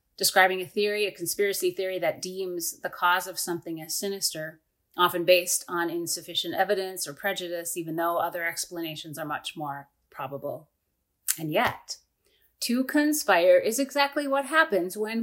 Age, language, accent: 30-49, English, American